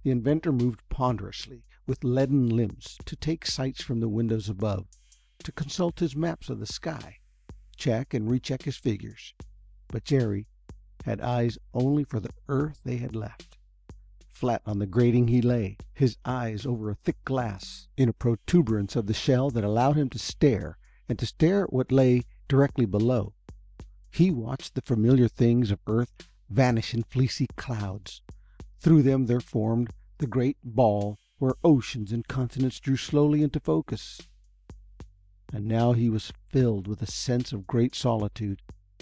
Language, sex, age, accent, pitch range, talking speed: English, male, 60-79, American, 105-130 Hz, 160 wpm